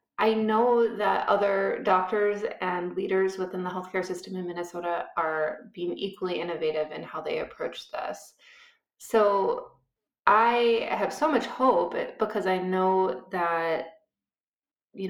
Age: 20-39